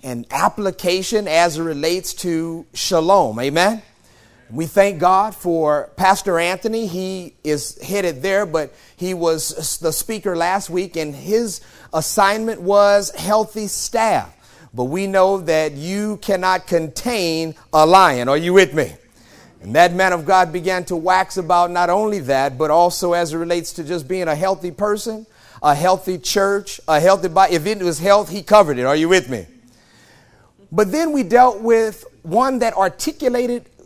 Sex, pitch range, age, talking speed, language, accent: male, 155-200 Hz, 40-59, 165 wpm, English, American